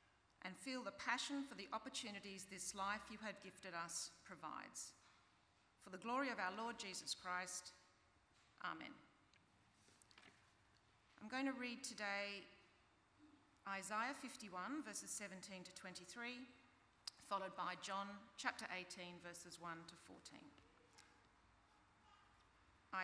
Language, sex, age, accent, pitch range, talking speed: English, female, 40-59, Australian, 180-240 Hz, 110 wpm